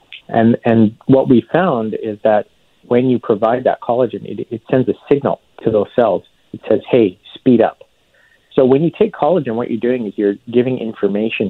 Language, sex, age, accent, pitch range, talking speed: English, male, 40-59, American, 95-115 Hz, 195 wpm